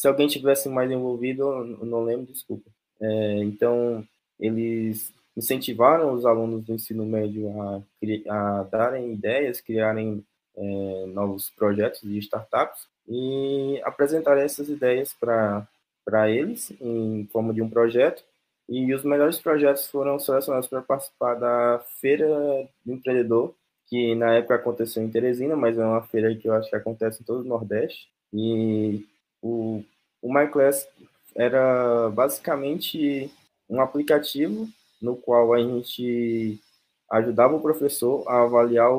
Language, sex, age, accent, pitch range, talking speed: Portuguese, male, 20-39, Brazilian, 110-135 Hz, 130 wpm